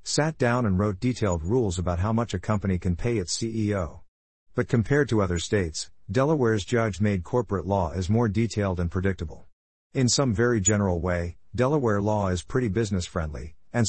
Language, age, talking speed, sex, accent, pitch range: English, 50-69, 175 wpm, male, American, 90-115 Hz